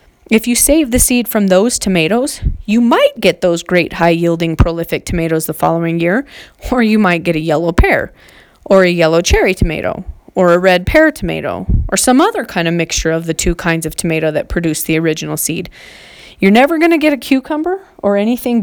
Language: English